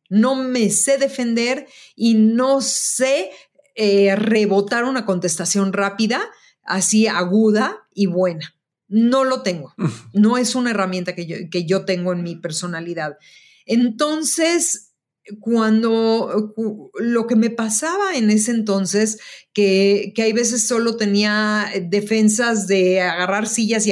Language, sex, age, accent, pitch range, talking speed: Spanish, female, 40-59, Mexican, 190-245 Hz, 125 wpm